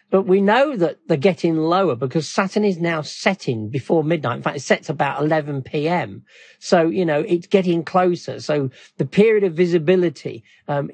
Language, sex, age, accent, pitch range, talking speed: English, male, 50-69, British, 145-195 Hz, 180 wpm